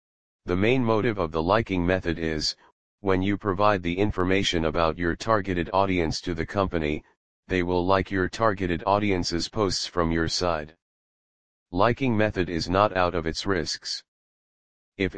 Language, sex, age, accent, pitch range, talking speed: English, male, 40-59, American, 85-100 Hz, 155 wpm